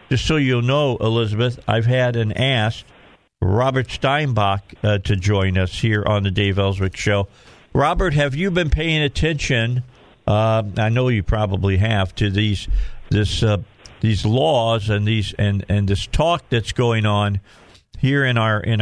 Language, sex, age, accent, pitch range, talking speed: English, male, 50-69, American, 100-130 Hz, 165 wpm